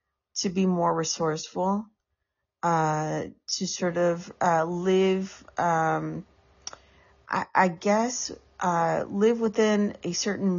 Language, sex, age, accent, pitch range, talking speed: English, female, 30-49, American, 165-200 Hz, 110 wpm